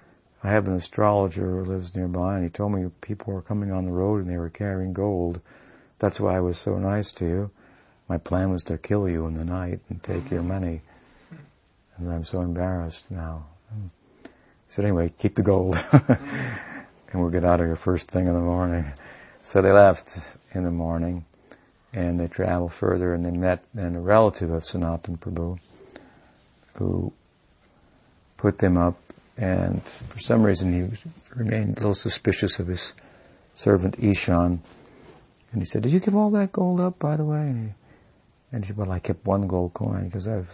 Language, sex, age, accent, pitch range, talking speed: English, male, 60-79, American, 85-105 Hz, 190 wpm